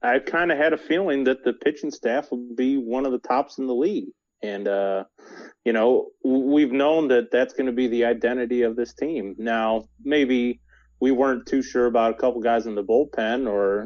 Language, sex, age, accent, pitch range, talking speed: English, male, 30-49, American, 110-135 Hz, 210 wpm